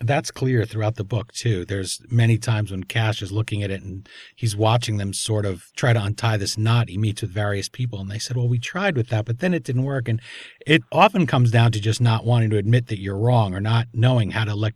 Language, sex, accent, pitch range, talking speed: English, male, American, 105-125 Hz, 260 wpm